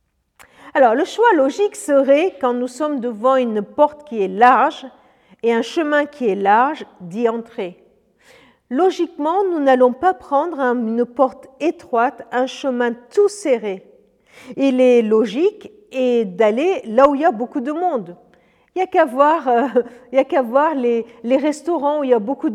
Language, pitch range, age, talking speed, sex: French, 245-320 Hz, 50-69, 175 wpm, female